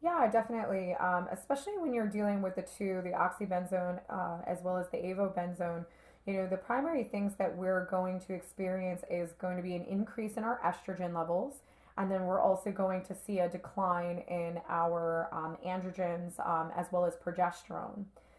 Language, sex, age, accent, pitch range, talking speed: English, female, 20-39, American, 175-195 Hz, 185 wpm